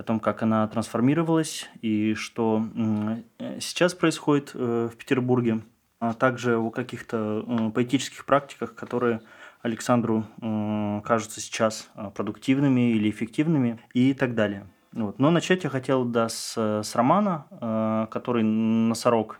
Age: 20-39